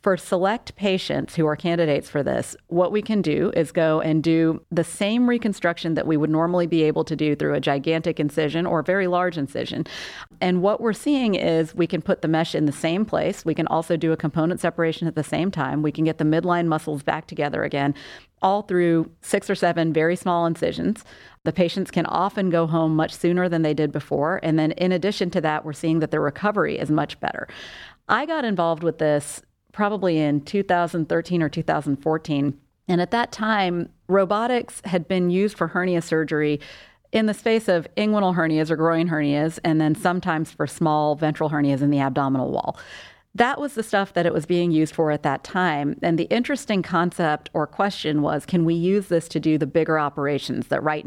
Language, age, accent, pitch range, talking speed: English, 40-59, American, 155-180 Hz, 205 wpm